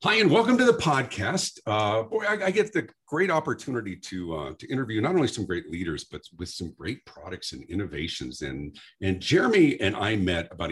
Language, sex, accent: English, male, American